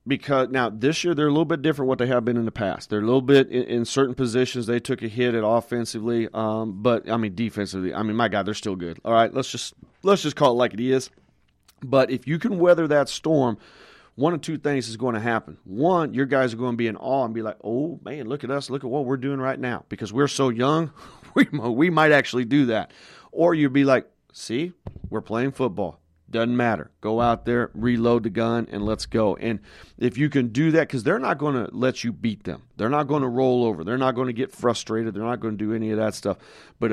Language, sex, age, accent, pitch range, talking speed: English, male, 40-59, American, 115-145 Hz, 255 wpm